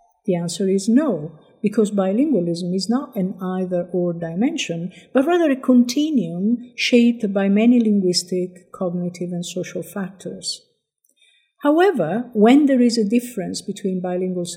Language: English